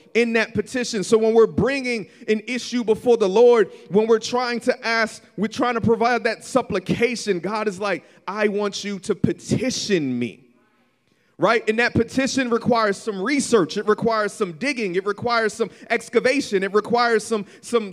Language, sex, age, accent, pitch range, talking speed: English, male, 30-49, American, 180-235 Hz, 165 wpm